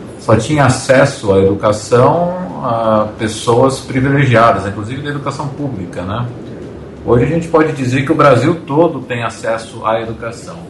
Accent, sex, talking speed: Brazilian, male, 145 wpm